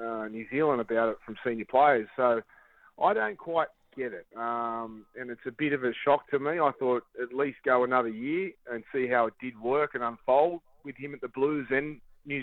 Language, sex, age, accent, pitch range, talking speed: English, male, 30-49, Australian, 120-140 Hz, 220 wpm